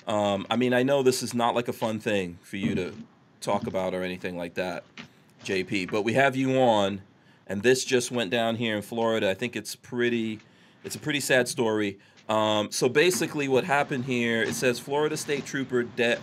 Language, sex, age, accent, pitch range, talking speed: English, male, 40-59, American, 105-125 Hz, 205 wpm